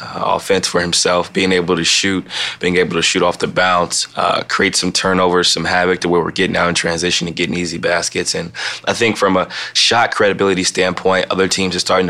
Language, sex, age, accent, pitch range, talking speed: English, male, 20-39, American, 85-95 Hz, 220 wpm